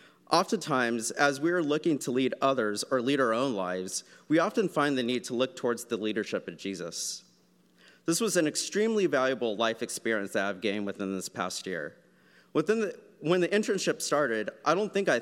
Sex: male